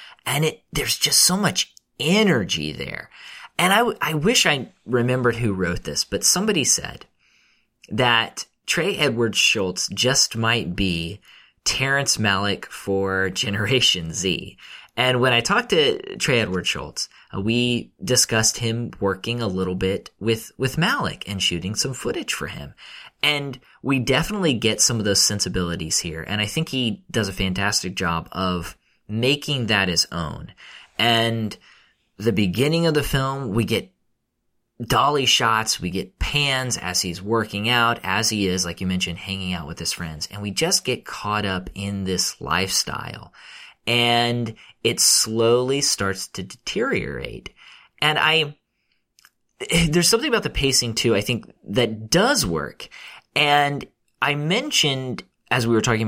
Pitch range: 95-130 Hz